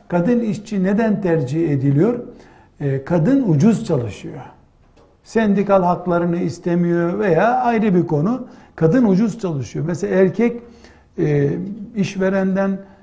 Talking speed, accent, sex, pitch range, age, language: 105 wpm, native, male, 170-220 Hz, 60-79, Turkish